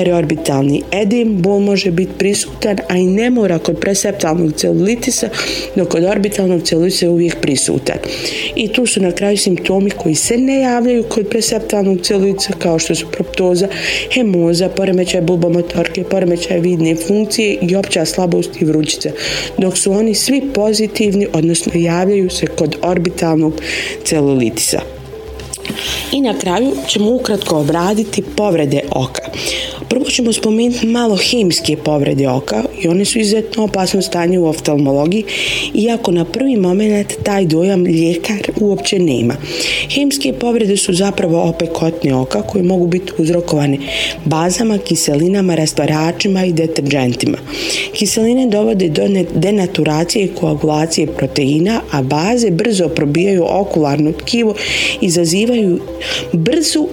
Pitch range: 165-210 Hz